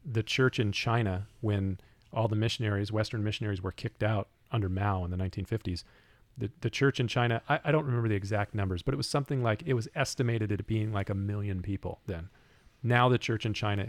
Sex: male